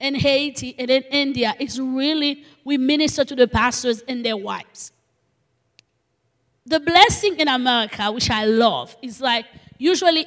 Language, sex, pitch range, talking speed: English, female, 240-290 Hz, 145 wpm